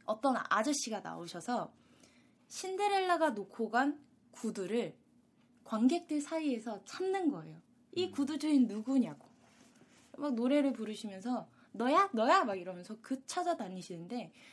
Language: Korean